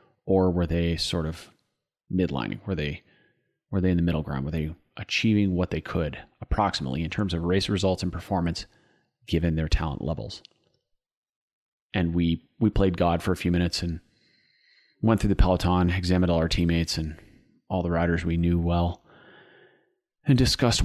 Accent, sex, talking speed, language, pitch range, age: American, male, 170 wpm, English, 85-95 Hz, 30-49